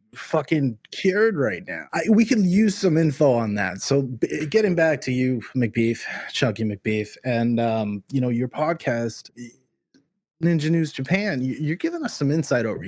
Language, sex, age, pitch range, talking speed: English, male, 20-39, 120-160 Hz, 160 wpm